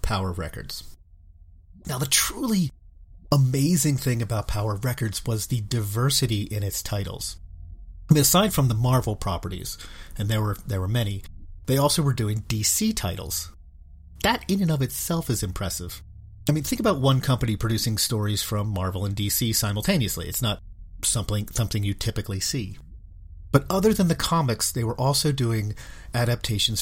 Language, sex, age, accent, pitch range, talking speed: English, male, 40-59, American, 95-135 Hz, 160 wpm